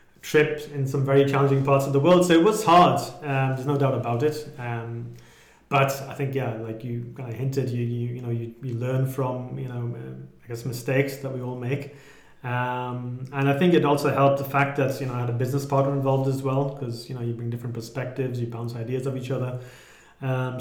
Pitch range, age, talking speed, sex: 125-150 Hz, 30-49, 235 wpm, male